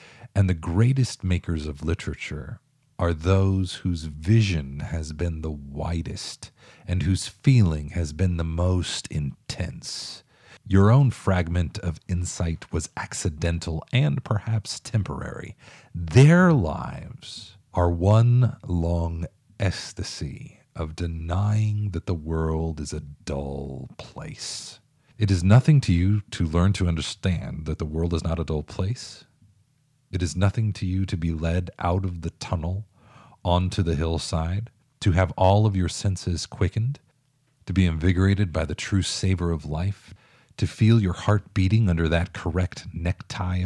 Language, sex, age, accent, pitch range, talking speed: English, male, 40-59, American, 85-105 Hz, 145 wpm